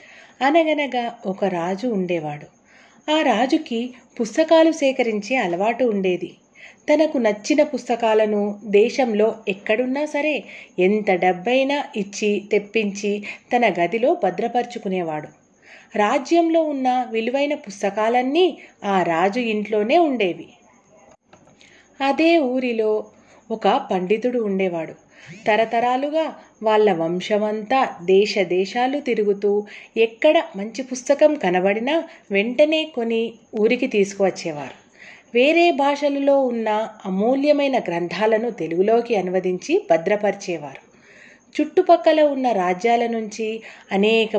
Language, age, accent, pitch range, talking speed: Telugu, 30-49, native, 200-260 Hz, 85 wpm